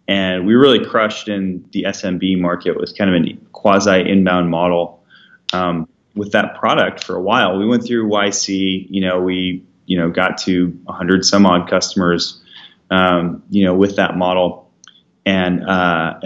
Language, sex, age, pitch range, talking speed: English, male, 30-49, 90-110 Hz, 165 wpm